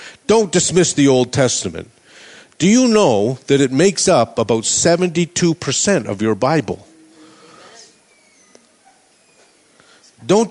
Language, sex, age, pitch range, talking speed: English, male, 50-69, 145-190 Hz, 105 wpm